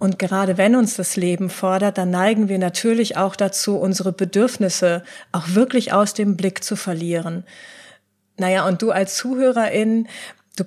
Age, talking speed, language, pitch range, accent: 30-49, 155 wpm, German, 190-225 Hz, German